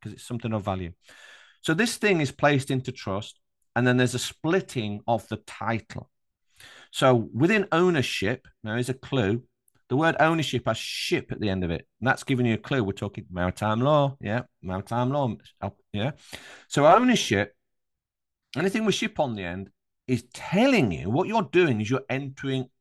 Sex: male